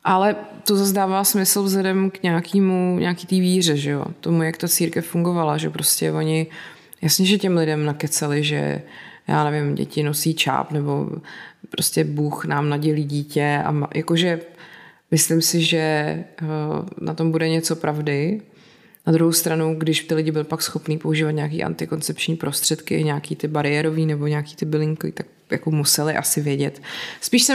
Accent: native